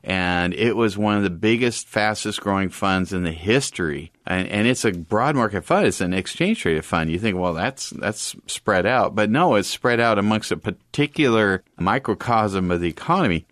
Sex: male